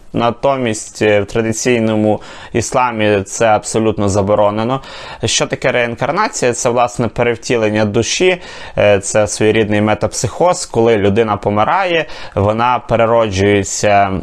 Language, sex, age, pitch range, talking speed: Ukrainian, male, 20-39, 105-125 Hz, 95 wpm